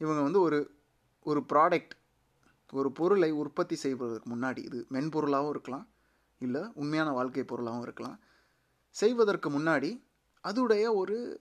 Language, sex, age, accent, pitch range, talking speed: Tamil, male, 30-49, native, 130-205 Hz, 115 wpm